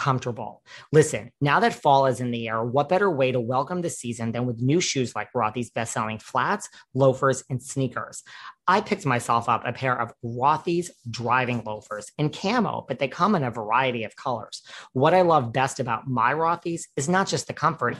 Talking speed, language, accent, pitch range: 195 wpm, English, American, 125-150 Hz